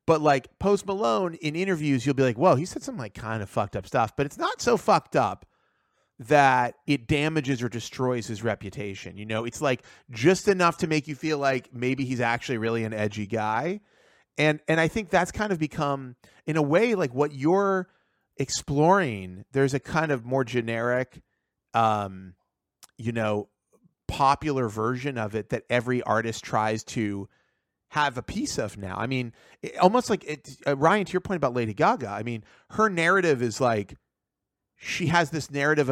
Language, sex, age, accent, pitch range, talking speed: English, male, 30-49, American, 110-150 Hz, 185 wpm